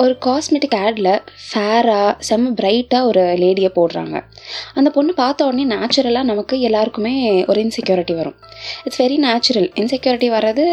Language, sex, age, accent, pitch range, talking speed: Tamil, female, 20-39, native, 210-275 Hz, 135 wpm